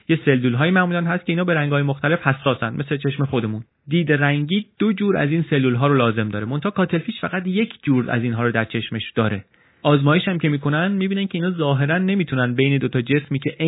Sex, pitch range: male, 120-155 Hz